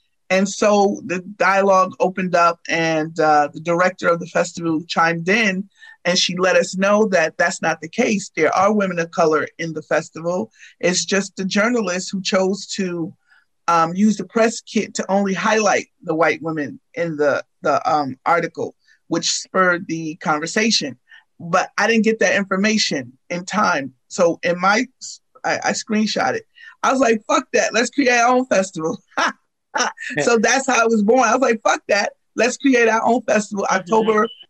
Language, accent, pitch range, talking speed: English, American, 185-230 Hz, 175 wpm